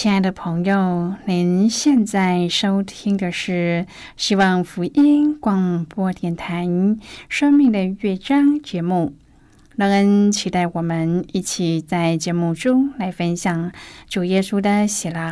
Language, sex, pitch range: Chinese, female, 170-205 Hz